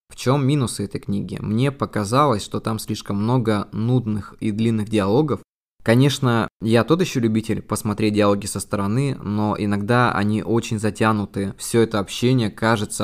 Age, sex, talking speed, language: 20-39, male, 150 wpm, Russian